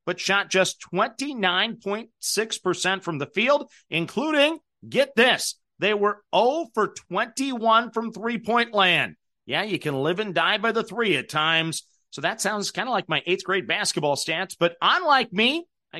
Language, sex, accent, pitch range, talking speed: English, male, American, 170-220 Hz, 165 wpm